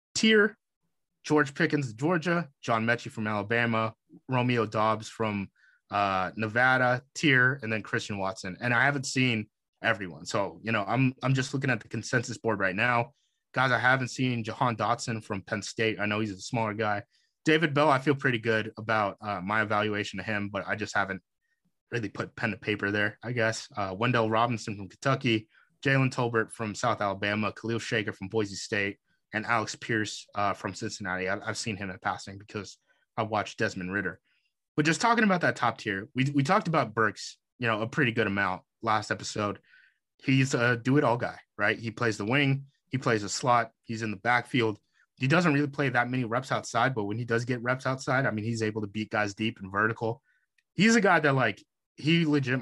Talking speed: 200 wpm